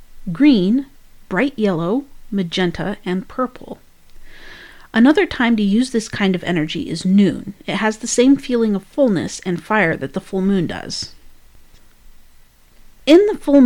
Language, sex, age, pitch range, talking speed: English, female, 40-59, 185-230 Hz, 145 wpm